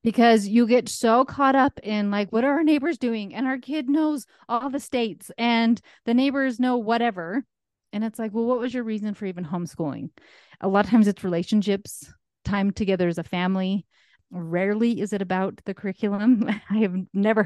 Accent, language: American, English